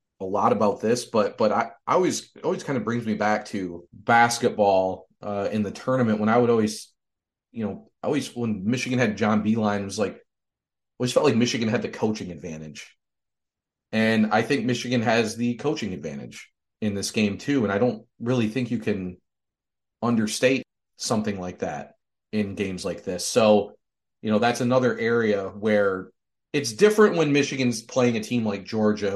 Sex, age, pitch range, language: male, 30-49, 100-115 Hz, English